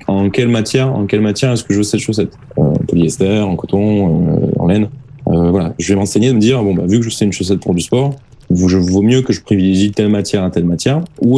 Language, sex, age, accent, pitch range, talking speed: French, male, 20-39, French, 95-125 Hz, 260 wpm